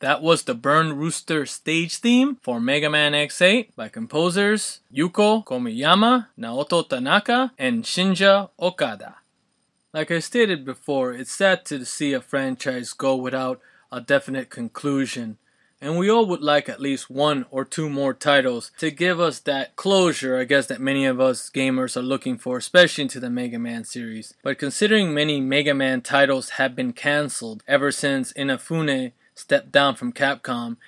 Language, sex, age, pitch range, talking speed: English, male, 20-39, 130-185 Hz, 165 wpm